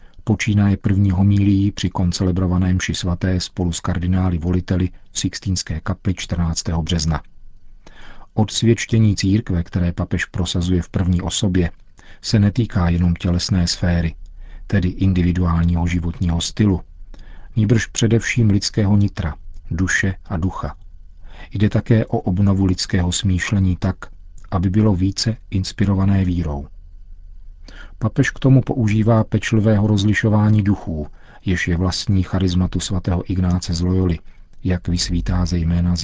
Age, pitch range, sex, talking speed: 40-59, 90-105 Hz, male, 120 wpm